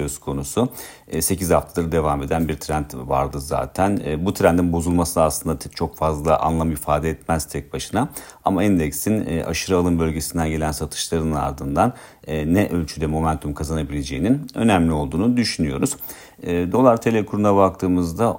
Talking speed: 145 wpm